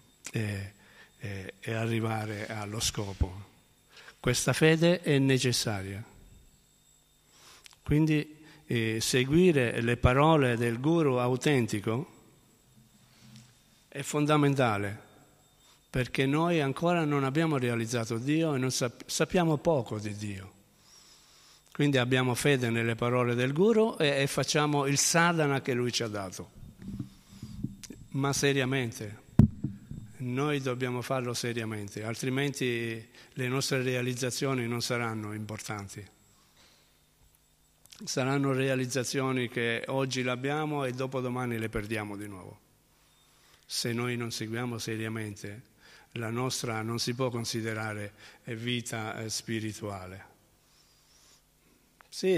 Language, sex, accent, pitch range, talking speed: Italian, male, native, 110-140 Hz, 100 wpm